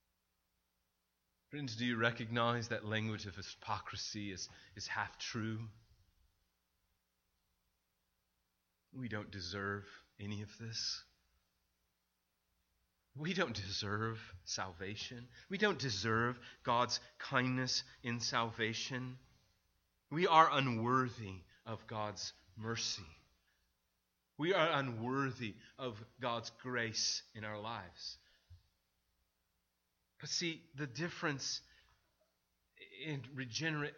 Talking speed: 90 wpm